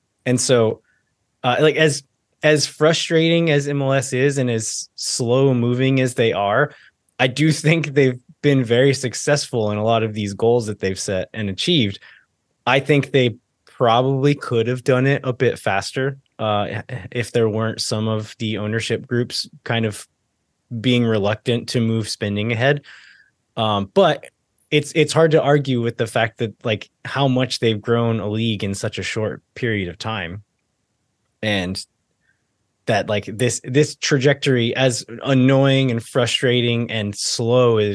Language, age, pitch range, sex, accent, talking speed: English, 20-39, 110-135 Hz, male, American, 160 wpm